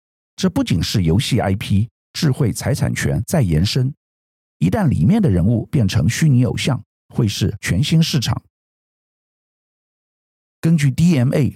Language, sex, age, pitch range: Chinese, male, 50-69, 95-140 Hz